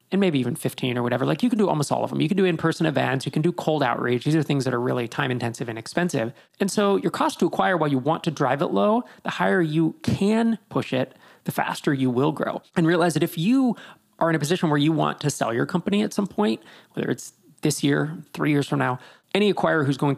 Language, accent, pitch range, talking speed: English, American, 130-165 Hz, 265 wpm